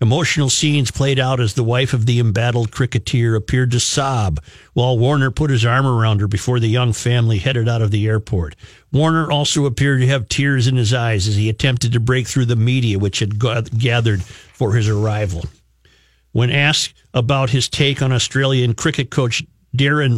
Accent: American